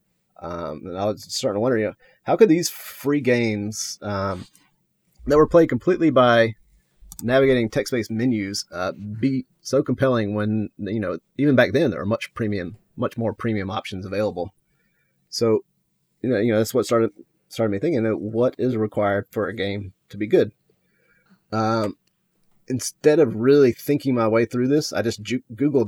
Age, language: 30-49, English